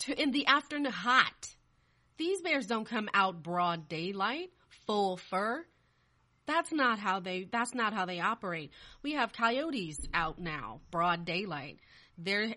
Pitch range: 170-220 Hz